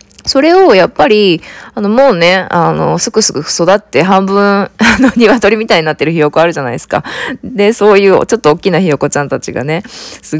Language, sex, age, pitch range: Japanese, female, 20-39, 165-255 Hz